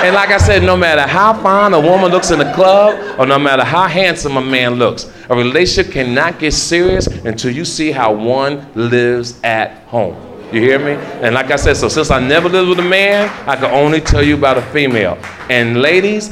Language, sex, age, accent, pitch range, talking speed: English, male, 40-59, American, 140-225 Hz, 220 wpm